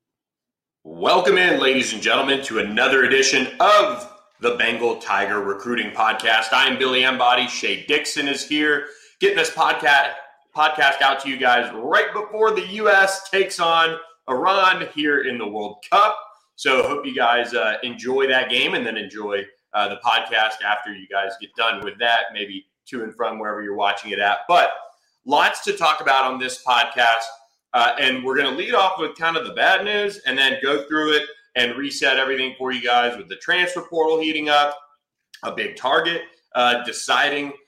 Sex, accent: male, American